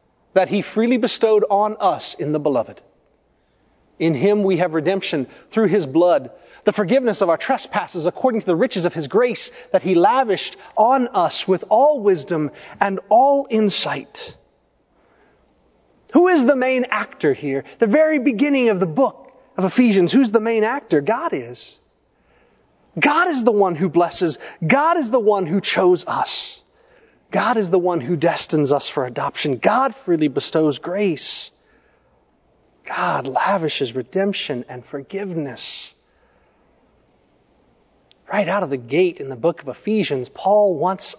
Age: 30-49